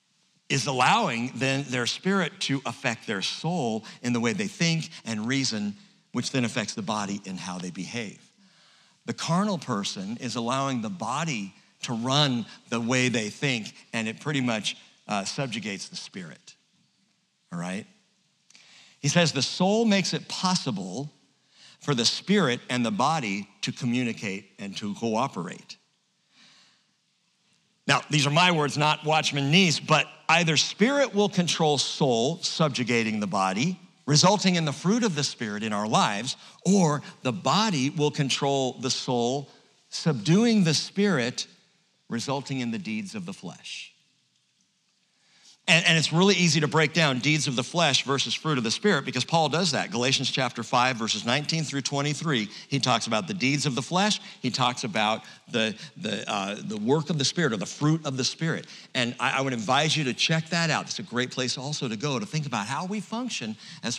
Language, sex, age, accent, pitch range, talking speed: English, male, 50-69, American, 125-190 Hz, 175 wpm